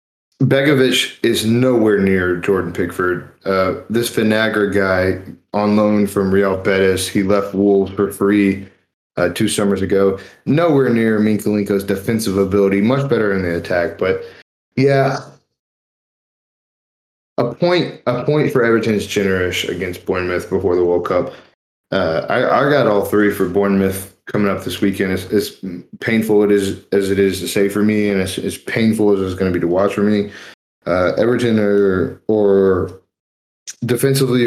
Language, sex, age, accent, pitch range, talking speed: English, male, 20-39, American, 95-110 Hz, 155 wpm